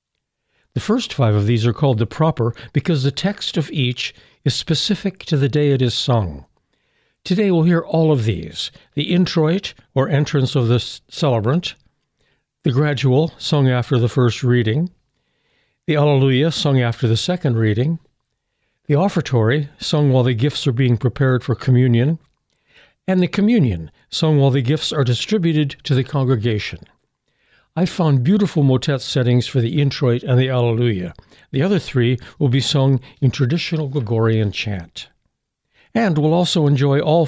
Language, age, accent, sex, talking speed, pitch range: English, 60-79, American, male, 160 wpm, 125-155 Hz